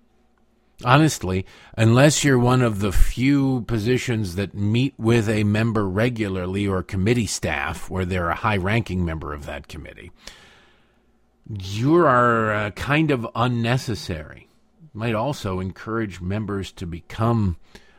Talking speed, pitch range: 125 wpm, 95-125 Hz